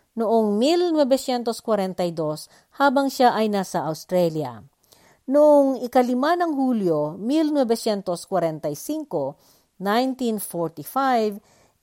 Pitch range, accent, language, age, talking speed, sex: 185-260 Hz, native, Filipino, 50-69, 65 wpm, female